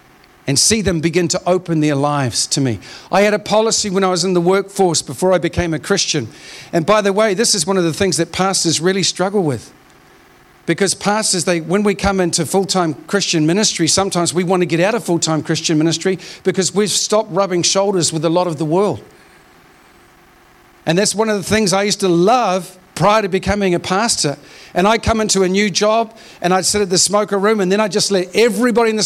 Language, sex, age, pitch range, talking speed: English, male, 50-69, 165-205 Hz, 225 wpm